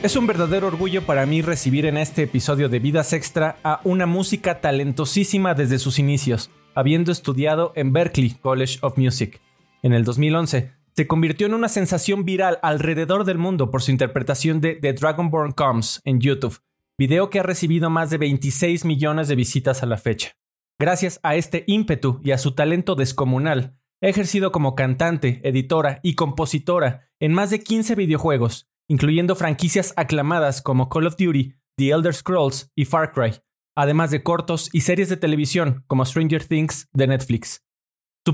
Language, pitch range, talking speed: Spanish, 135-170 Hz, 170 wpm